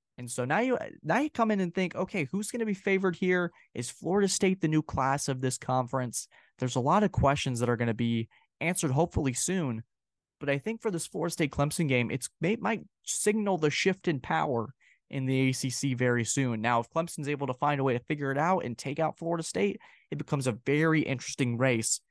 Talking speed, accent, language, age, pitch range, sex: 220 wpm, American, English, 20-39, 120-160 Hz, male